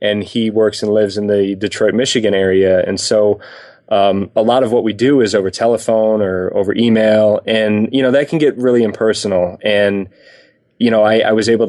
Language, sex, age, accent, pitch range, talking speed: English, male, 20-39, American, 100-115 Hz, 205 wpm